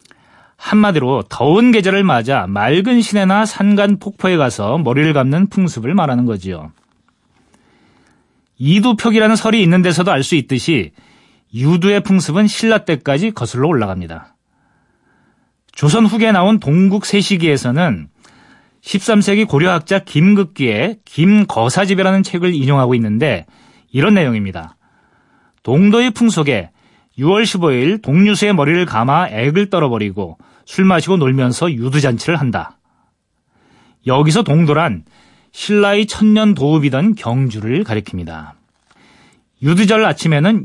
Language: Korean